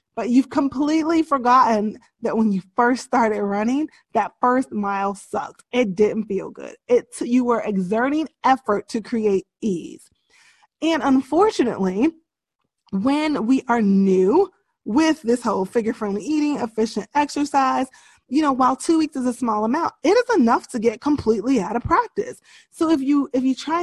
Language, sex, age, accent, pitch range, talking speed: English, female, 20-39, American, 215-300 Hz, 160 wpm